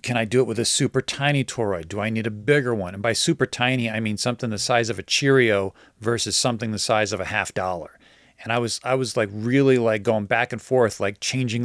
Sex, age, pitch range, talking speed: male, 40-59, 110-135 Hz, 250 wpm